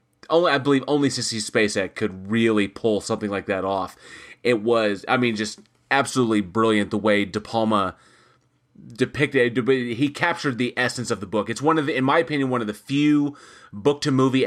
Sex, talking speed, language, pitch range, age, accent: male, 185 wpm, English, 105-130 Hz, 30-49, American